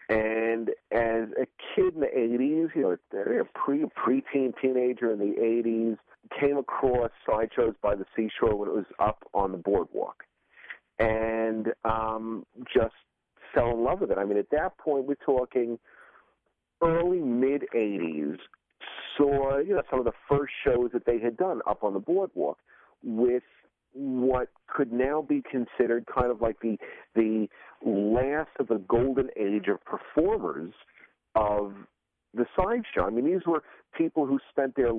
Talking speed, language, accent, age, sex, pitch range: 160 wpm, English, American, 50-69, male, 115-140 Hz